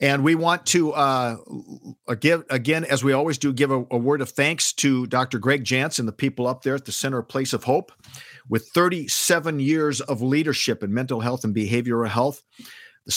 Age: 50-69